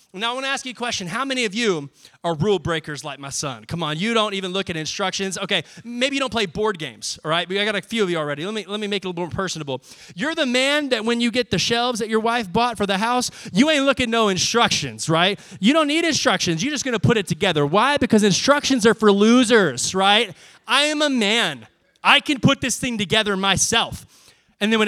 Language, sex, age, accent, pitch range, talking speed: English, male, 20-39, American, 170-255 Hz, 255 wpm